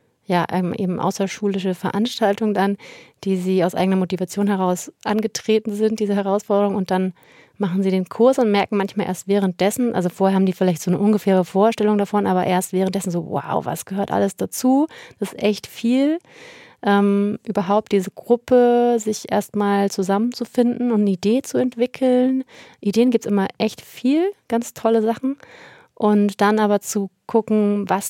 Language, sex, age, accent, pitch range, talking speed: German, female, 30-49, German, 180-210 Hz, 160 wpm